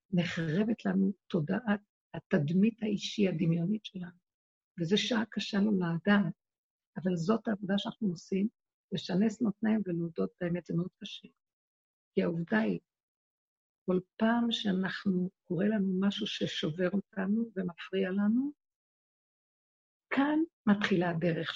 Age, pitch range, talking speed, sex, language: 50-69, 180-220 Hz, 115 wpm, female, Hebrew